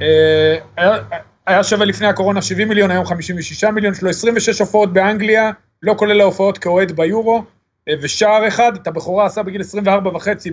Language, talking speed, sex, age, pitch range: Hebrew, 170 wpm, male, 40-59, 170-215 Hz